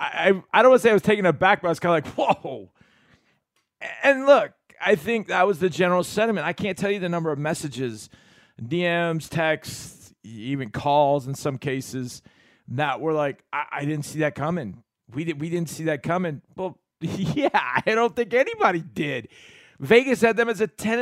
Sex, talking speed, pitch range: male, 200 wpm, 135-195 Hz